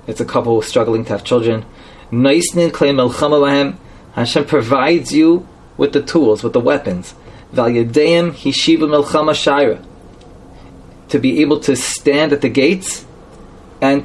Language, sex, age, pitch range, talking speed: English, male, 30-49, 125-165 Hz, 105 wpm